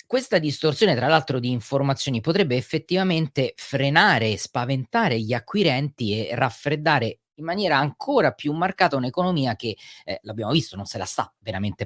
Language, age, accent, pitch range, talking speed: Italian, 30-49, native, 115-155 Hz, 145 wpm